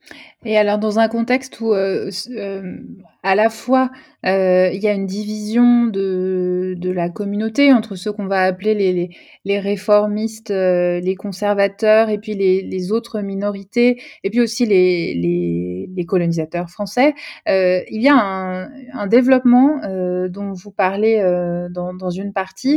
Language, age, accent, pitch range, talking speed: French, 20-39, French, 190-240 Hz, 170 wpm